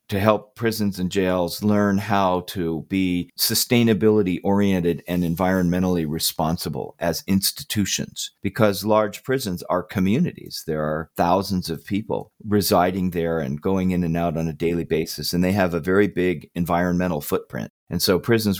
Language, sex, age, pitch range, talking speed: English, male, 40-59, 85-105 Hz, 150 wpm